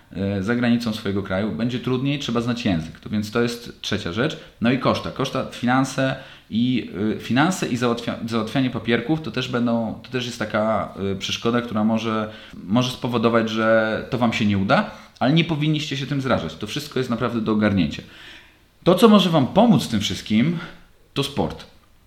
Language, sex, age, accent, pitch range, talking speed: Polish, male, 30-49, native, 105-125 Hz, 185 wpm